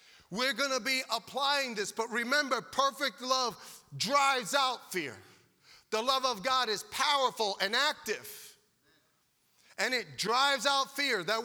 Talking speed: 140 wpm